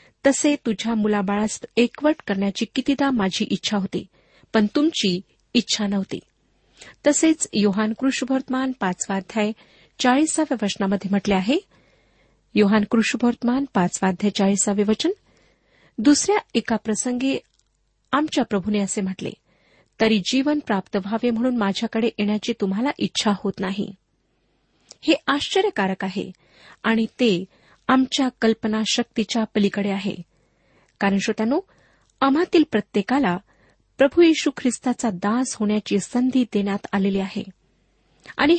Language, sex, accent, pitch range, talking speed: Marathi, female, native, 200-265 Hz, 105 wpm